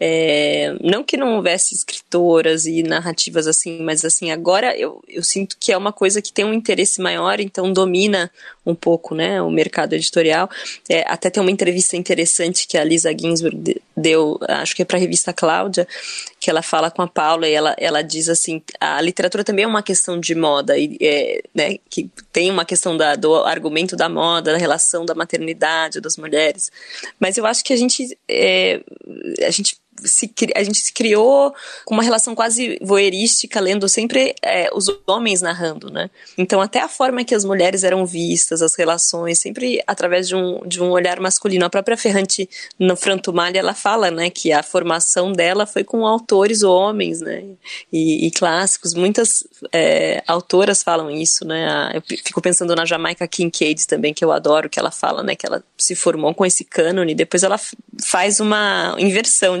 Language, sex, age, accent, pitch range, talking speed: Portuguese, female, 20-39, Brazilian, 165-205 Hz, 180 wpm